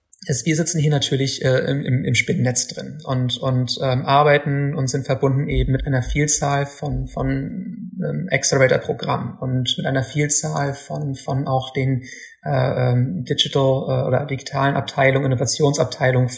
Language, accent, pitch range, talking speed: German, German, 130-150 Hz, 140 wpm